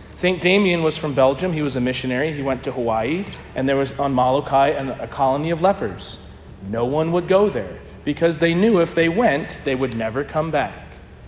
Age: 40-59